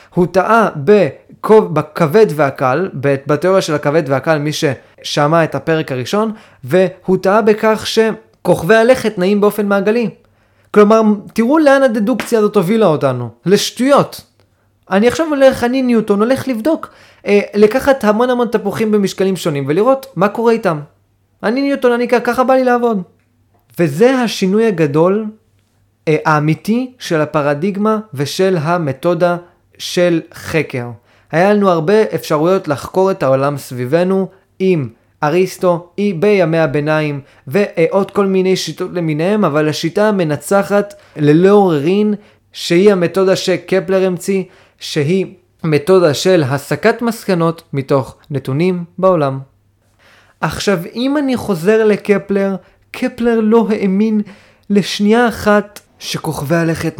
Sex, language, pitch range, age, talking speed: male, Hebrew, 150-210 Hz, 20-39, 115 wpm